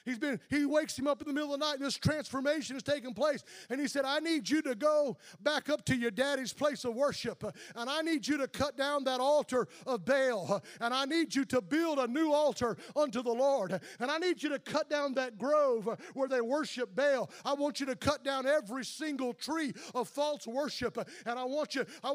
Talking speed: 235 wpm